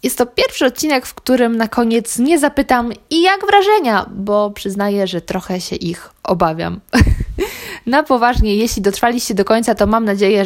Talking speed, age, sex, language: 165 wpm, 20-39, female, Polish